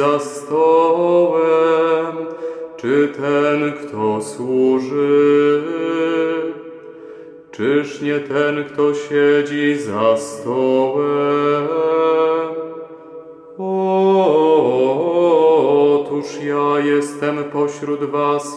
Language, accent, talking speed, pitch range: Polish, native, 60 wpm, 145-160 Hz